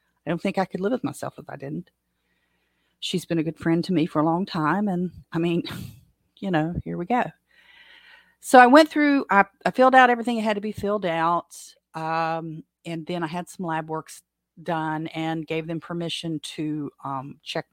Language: English